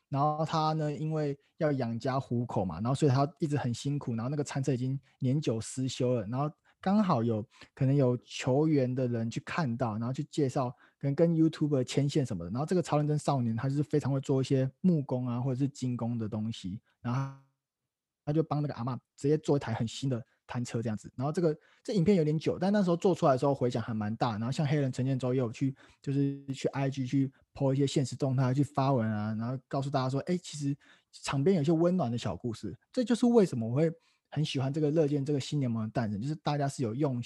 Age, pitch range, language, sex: 20-39, 120-150 Hz, Chinese, male